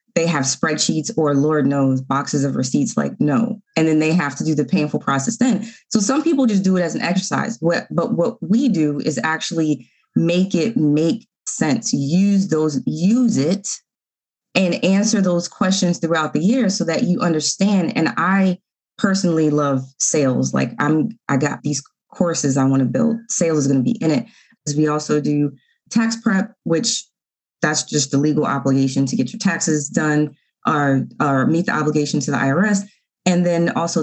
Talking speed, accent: 185 wpm, American